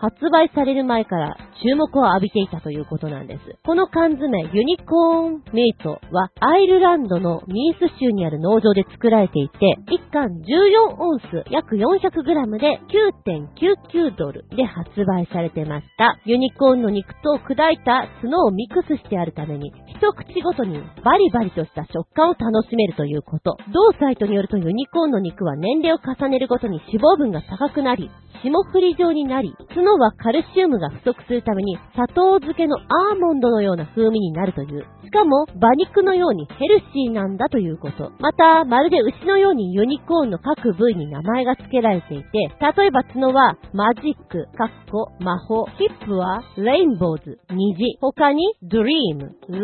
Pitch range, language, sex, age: 195-320 Hz, Japanese, female, 40-59